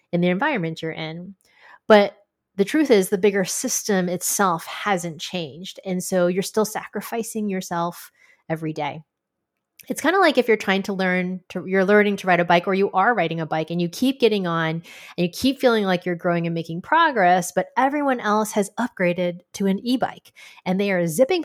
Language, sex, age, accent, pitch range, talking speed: English, female, 20-39, American, 175-225 Hz, 200 wpm